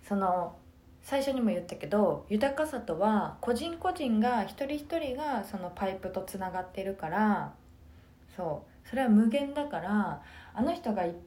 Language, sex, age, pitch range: Japanese, female, 20-39, 155-230 Hz